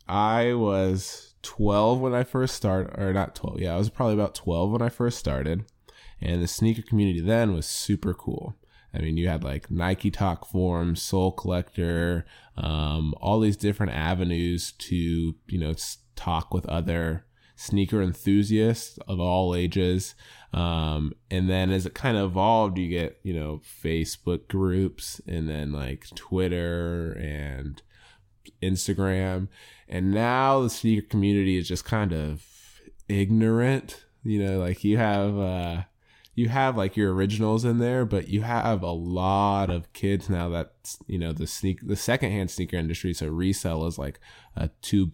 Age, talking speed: 20-39, 160 wpm